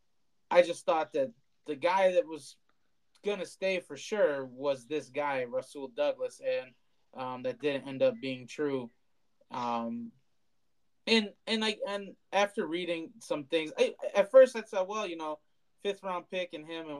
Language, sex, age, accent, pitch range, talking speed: English, male, 20-39, American, 135-175 Hz, 170 wpm